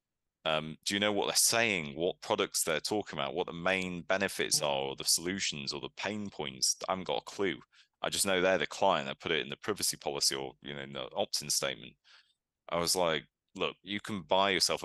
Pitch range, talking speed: 80-95 Hz, 230 wpm